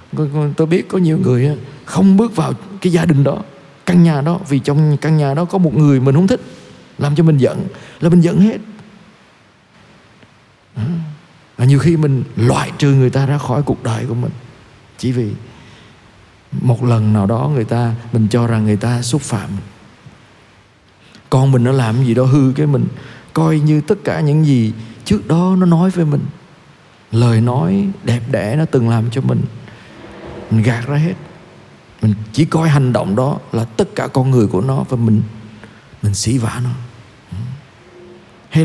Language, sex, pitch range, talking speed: Vietnamese, male, 115-155 Hz, 180 wpm